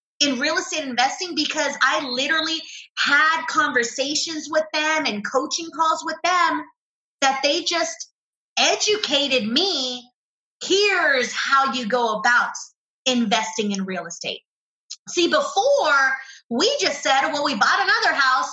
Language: English